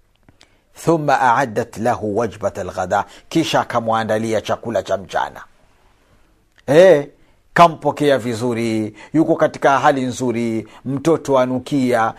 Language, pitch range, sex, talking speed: Swahili, 135-170 Hz, male, 90 wpm